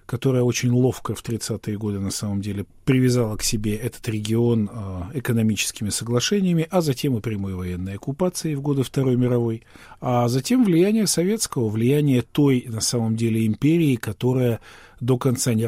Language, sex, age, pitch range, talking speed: Russian, male, 40-59, 110-135 Hz, 155 wpm